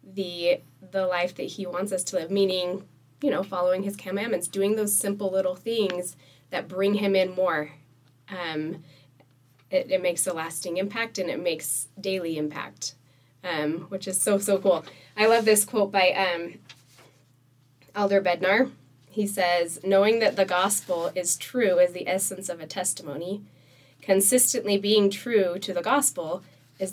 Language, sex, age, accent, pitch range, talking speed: English, female, 20-39, American, 145-195 Hz, 160 wpm